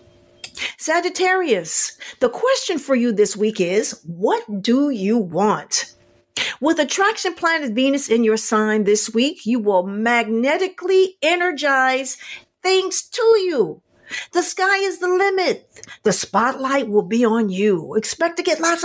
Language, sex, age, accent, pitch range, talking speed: English, female, 50-69, American, 220-350 Hz, 135 wpm